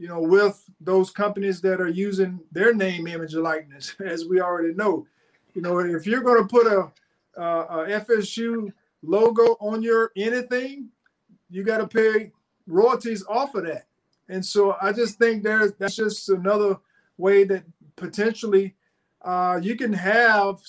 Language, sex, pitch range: English, male, 190-225 Hz